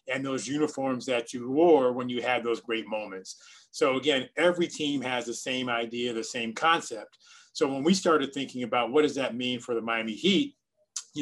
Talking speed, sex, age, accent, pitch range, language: 205 wpm, male, 30-49, American, 120-160 Hz, English